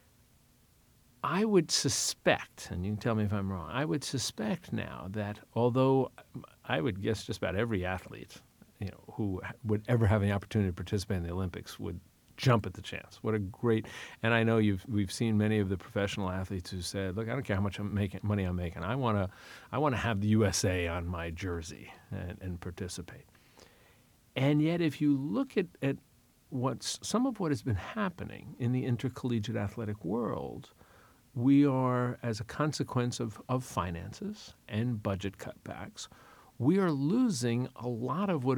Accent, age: American, 50-69